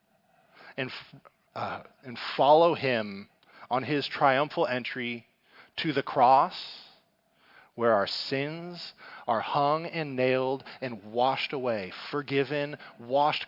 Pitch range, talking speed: 125-165 Hz, 100 wpm